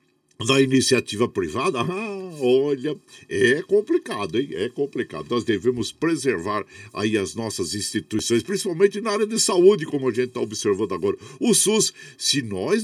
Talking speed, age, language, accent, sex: 150 wpm, 50-69, Portuguese, Brazilian, male